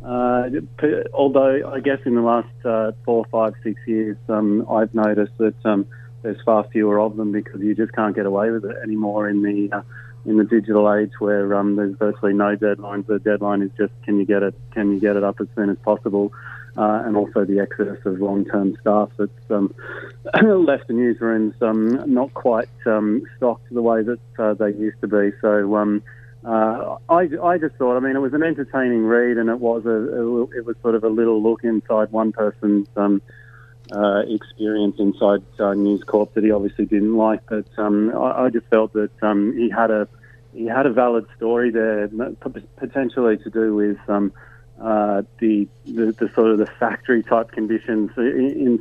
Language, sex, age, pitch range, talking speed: English, male, 30-49, 105-120 Hz, 200 wpm